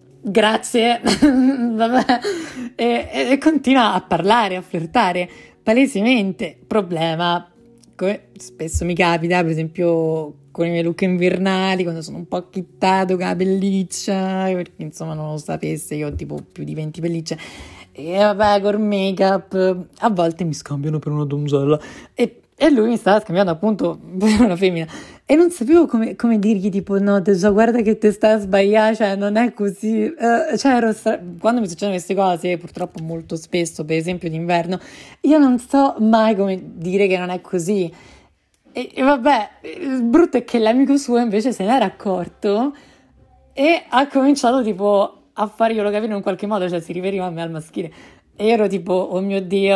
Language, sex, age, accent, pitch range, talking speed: Italian, female, 30-49, native, 175-220 Hz, 175 wpm